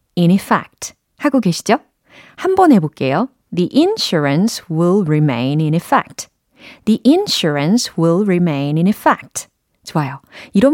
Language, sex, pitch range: Korean, female, 165-265 Hz